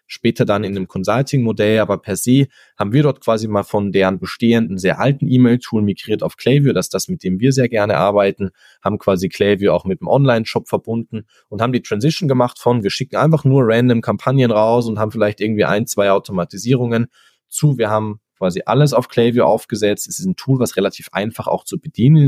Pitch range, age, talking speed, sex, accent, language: 95-125 Hz, 20-39, 205 wpm, male, German, German